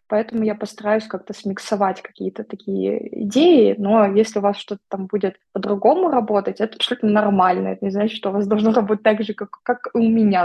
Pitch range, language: 205-240 Hz, Russian